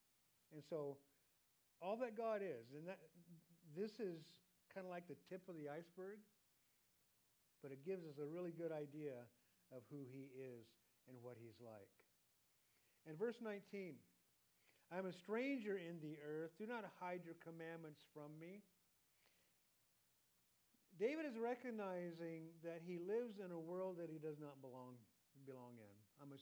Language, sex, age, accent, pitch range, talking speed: English, male, 50-69, American, 140-180 Hz, 155 wpm